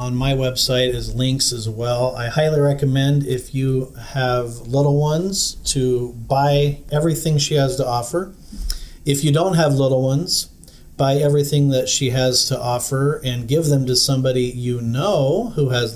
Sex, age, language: male, 40-59, English